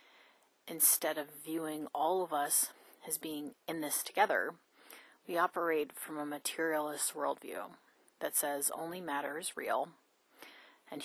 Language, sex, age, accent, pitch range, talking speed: English, female, 30-49, American, 150-170 Hz, 130 wpm